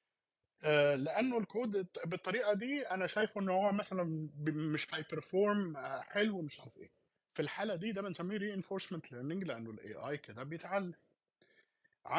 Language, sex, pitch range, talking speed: Arabic, male, 135-185 Hz, 135 wpm